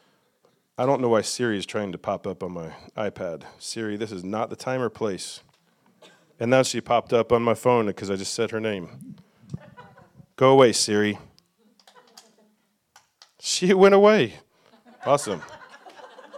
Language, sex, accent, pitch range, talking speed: English, male, American, 130-160 Hz, 155 wpm